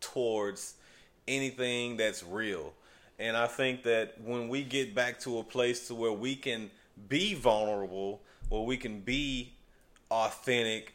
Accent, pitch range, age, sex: American, 105-125 Hz, 30-49, male